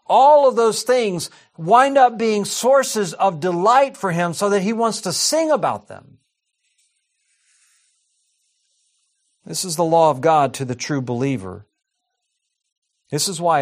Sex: male